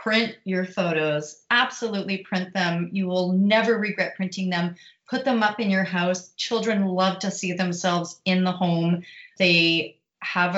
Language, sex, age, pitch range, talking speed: English, female, 30-49, 170-195 Hz, 160 wpm